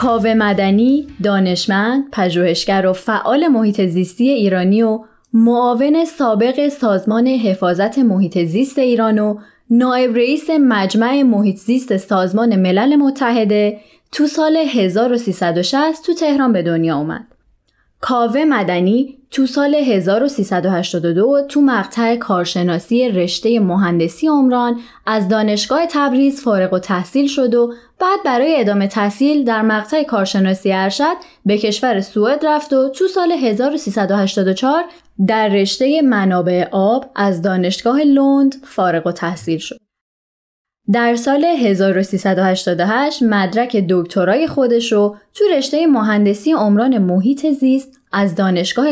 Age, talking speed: 20-39, 115 wpm